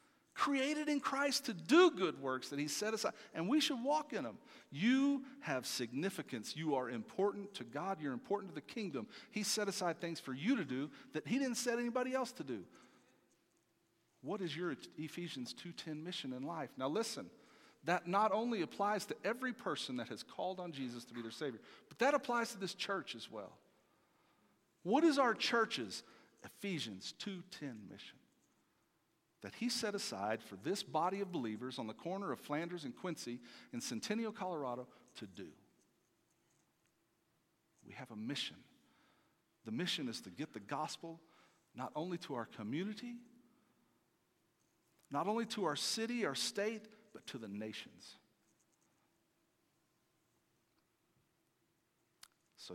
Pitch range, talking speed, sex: 150-240 Hz, 155 wpm, male